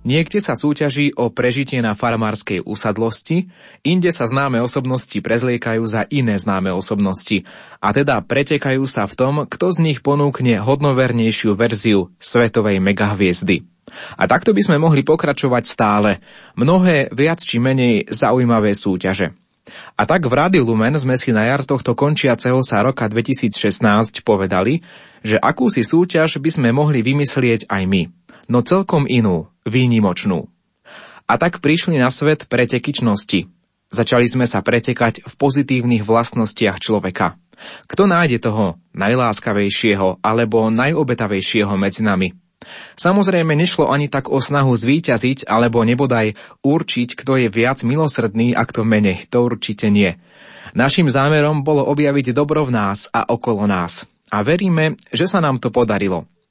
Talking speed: 140 wpm